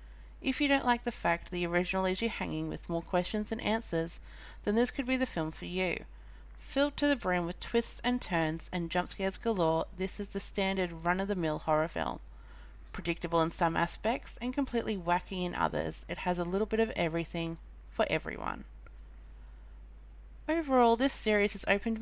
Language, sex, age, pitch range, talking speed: English, female, 30-49, 165-210 Hz, 190 wpm